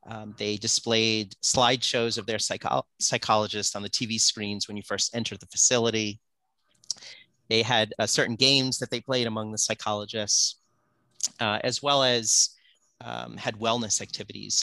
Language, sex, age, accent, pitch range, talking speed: English, male, 30-49, American, 100-115 Hz, 150 wpm